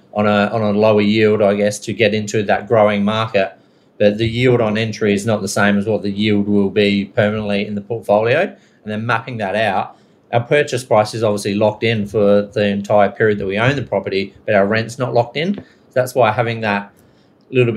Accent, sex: Australian, male